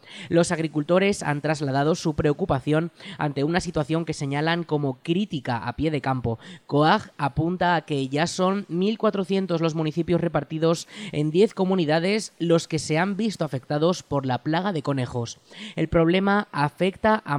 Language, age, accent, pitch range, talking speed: Spanish, 20-39, Spanish, 145-180 Hz, 155 wpm